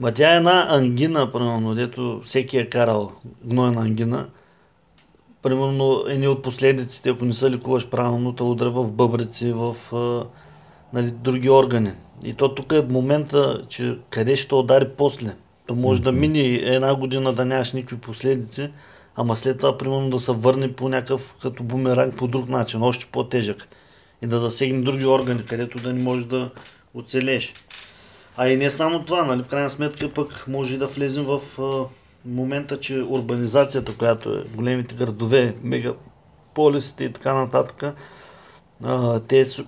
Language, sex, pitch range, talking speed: Bulgarian, male, 120-135 Hz, 155 wpm